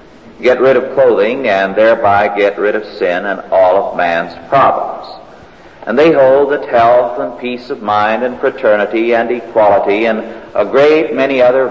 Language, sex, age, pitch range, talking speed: English, male, 50-69, 105-145 Hz, 170 wpm